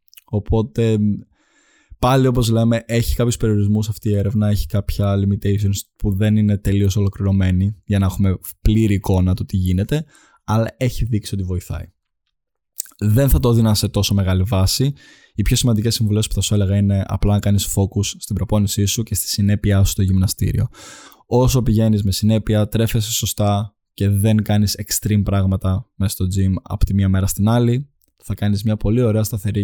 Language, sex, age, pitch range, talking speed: Greek, male, 20-39, 95-110 Hz, 175 wpm